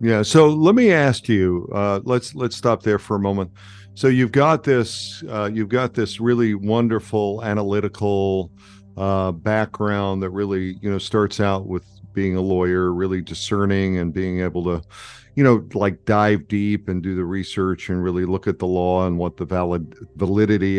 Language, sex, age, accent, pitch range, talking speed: English, male, 50-69, American, 95-115 Hz, 180 wpm